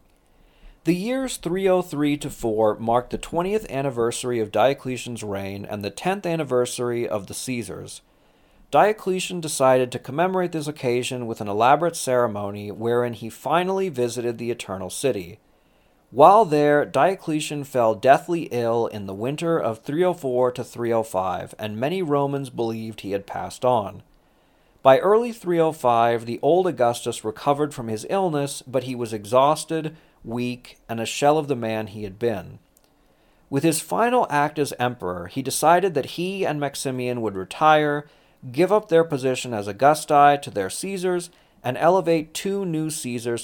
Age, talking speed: 40-59, 150 wpm